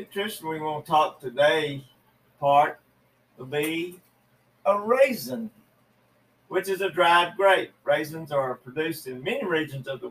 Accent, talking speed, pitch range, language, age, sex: American, 150 wpm, 140-185 Hz, English, 50-69, male